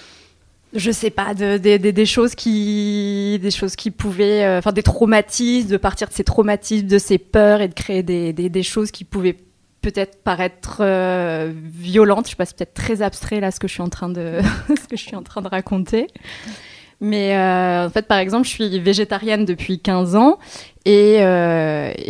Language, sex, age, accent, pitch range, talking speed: French, female, 20-39, French, 180-215 Hz, 205 wpm